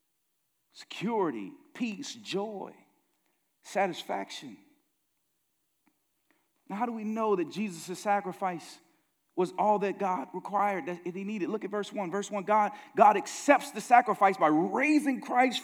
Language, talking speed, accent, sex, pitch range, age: English, 135 wpm, American, male, 190-280 Hz, 40-59